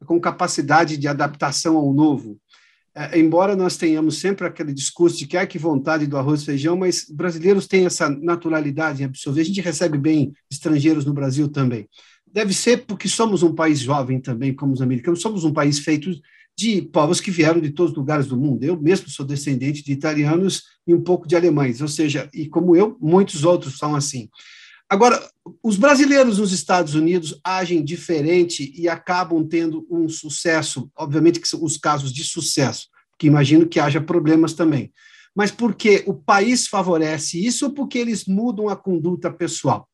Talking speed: 185 wpm